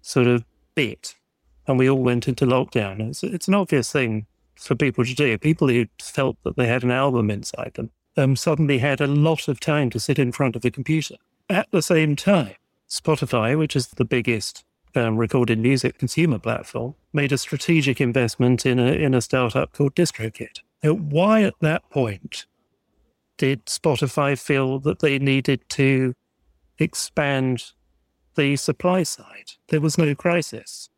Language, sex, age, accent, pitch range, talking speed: English, male, 40-59, British, 120-150 Hz, 170 wpm